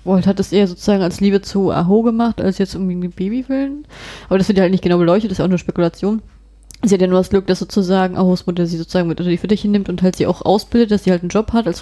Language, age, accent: German, 20-39, German